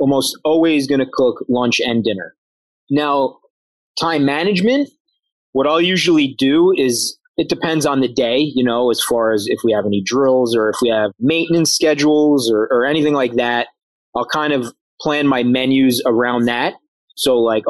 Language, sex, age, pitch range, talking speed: English, male, 30-49, 125-150 Hz, 175 wpm